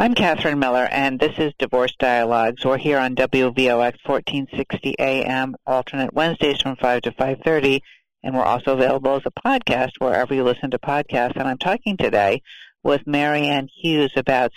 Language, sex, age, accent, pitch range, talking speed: English, female, 50-69, American, 130-155 Hz, 165 wpm